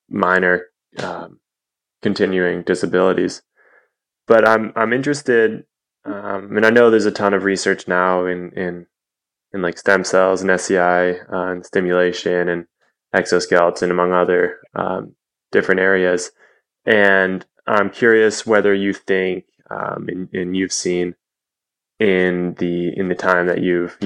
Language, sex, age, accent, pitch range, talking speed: English, male, 20-39, American, 90-95 Hz, 135 wpm